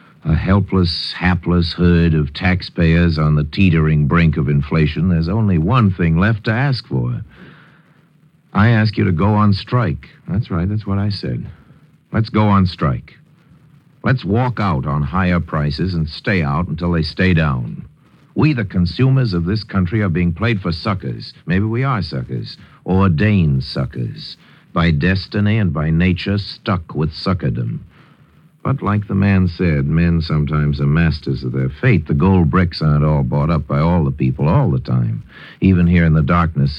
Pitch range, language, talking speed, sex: 75-105 Hz, English, 175 wpm, male